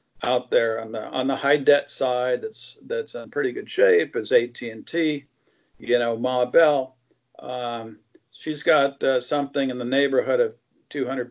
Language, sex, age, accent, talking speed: English, male, 50-69, American, 165 wpm